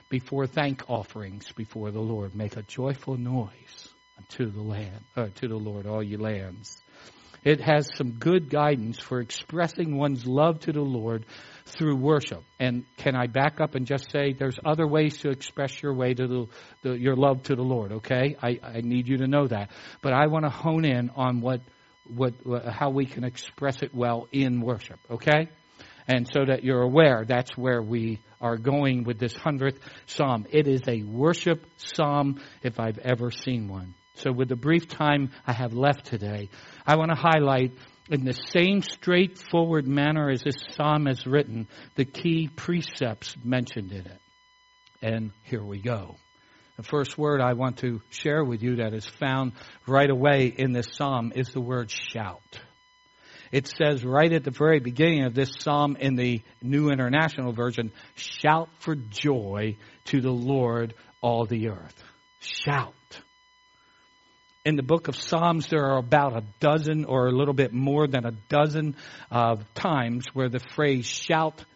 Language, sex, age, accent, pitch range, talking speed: English, male, 60-79, American, 120-150 Hz, 175 wpm